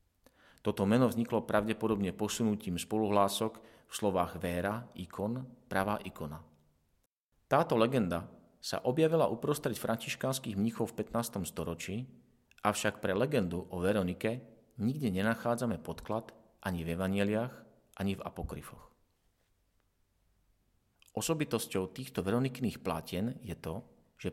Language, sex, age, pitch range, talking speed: Slovak, male, 40-59, 95-120 Hz, 105 wpm